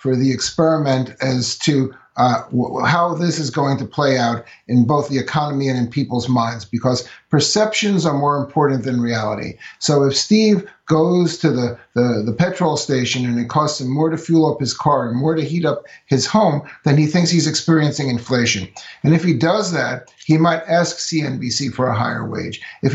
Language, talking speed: English, 195 wpm